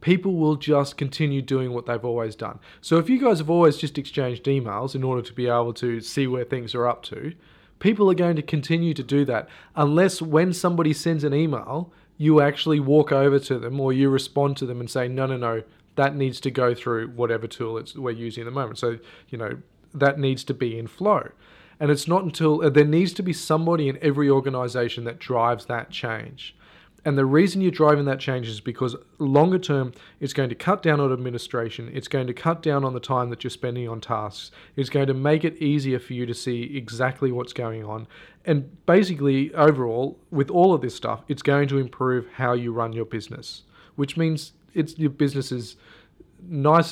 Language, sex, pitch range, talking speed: English, male, 120-150 Hz, 210 wpm